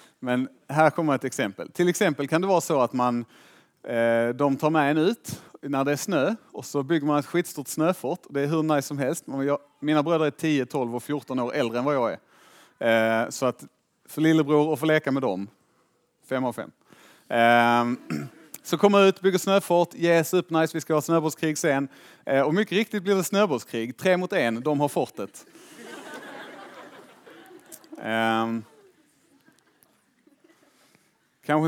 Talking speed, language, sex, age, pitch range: 165 wpm, Swedish, male, 30-49, 115-165 Hz